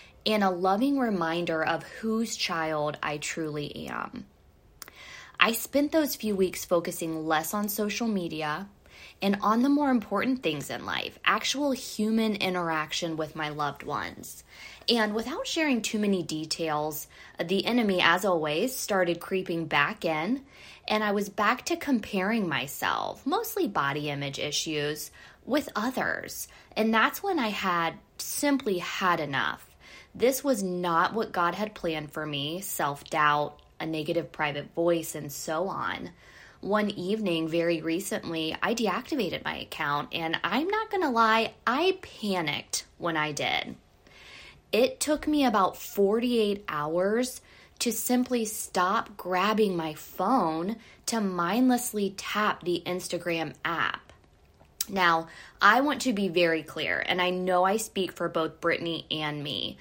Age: 10-29